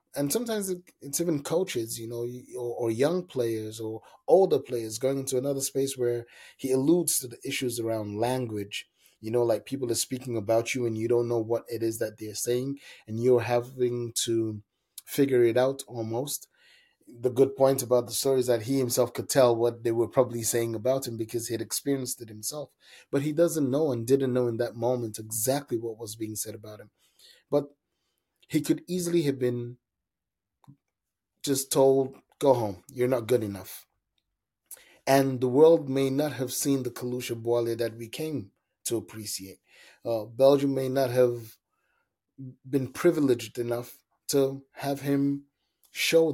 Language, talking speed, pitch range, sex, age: English, 175 wpm, 115-135 Hz, male, 30-49